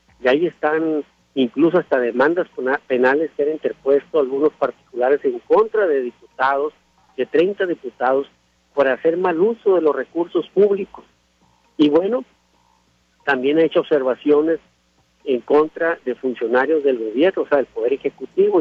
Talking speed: 145 wpm